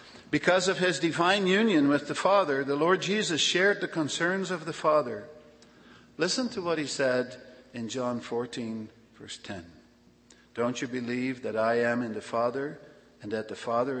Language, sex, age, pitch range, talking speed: English, male, 50-69, 120-165 Hz, 170 wpm